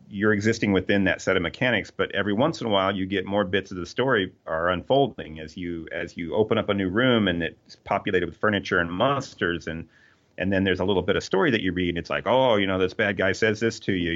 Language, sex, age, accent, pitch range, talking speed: English, male, 40-59, American, 85-105 Hz, 265 wpm